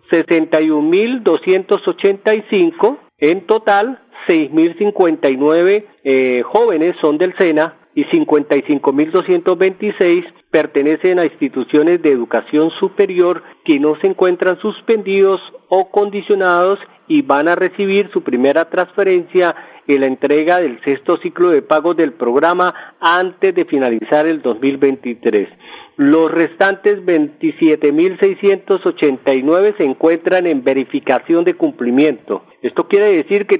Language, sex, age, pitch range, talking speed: Spanish, male, 40-59, 150-215 Hz, 105 wpm